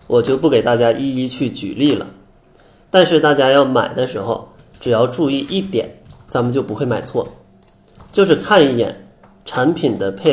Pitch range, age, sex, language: 105-150 Hz, 20-39, male, Chinese